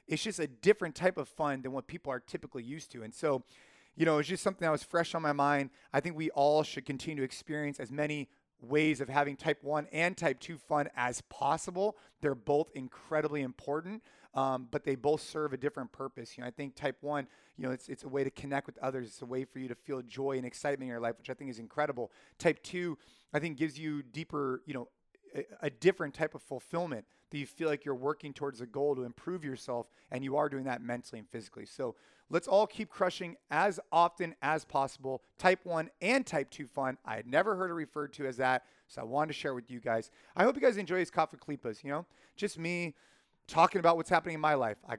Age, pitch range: 30-49, 135-160 Hz